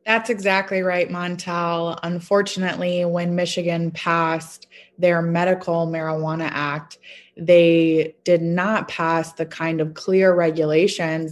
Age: 20-39